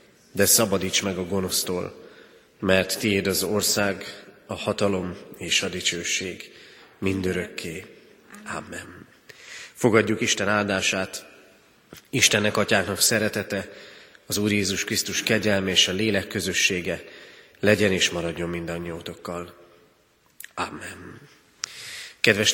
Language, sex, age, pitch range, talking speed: Hungarian, male, 30-49, 95-110 Hz, 100 wpm